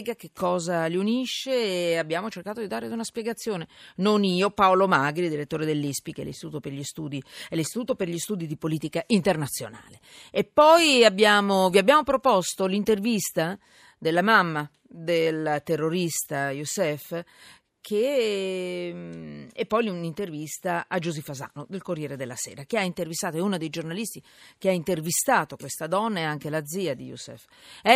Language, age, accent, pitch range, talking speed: Italian, 40-59, native, 155-220 Hz, 150 wpm